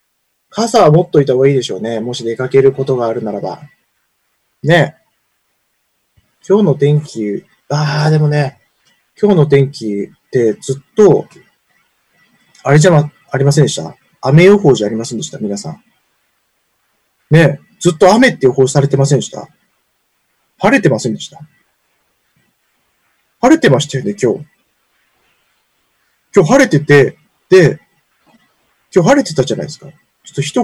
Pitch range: 130-175 Hz